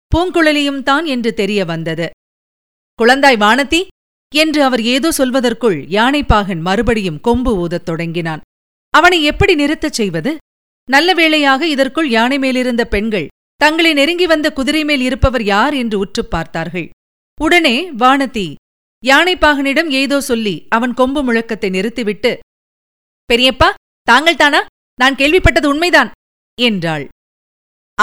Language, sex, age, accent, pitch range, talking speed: Tamil, female, 50-69, native, 235-300 Hz, 105 wpm